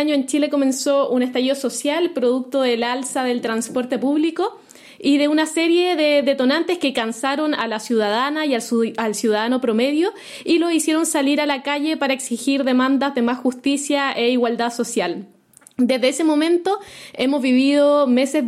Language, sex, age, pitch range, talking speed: Spanish, female, 20-39, 250-300 Hz, 160 wpm